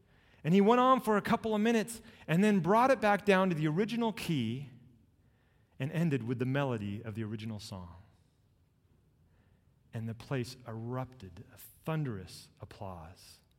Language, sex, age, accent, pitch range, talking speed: English, male, 30-49, American, 105-150 Hz, 155 wpm